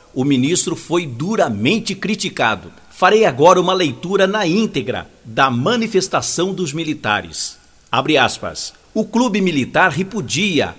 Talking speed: 115 wpm